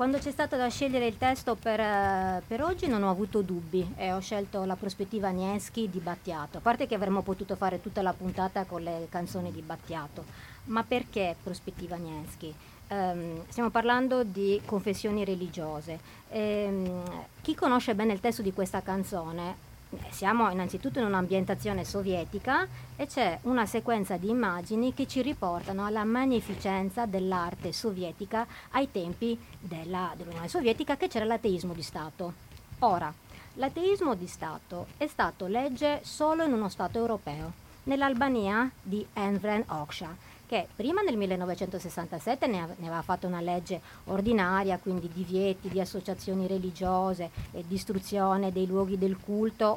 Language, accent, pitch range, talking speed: Italian, native, 180-230 Hz, 140 wpm